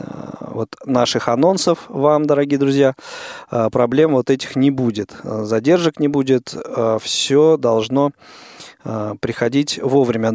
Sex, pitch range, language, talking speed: male, 120-145 Hz, Russian, 100 wpm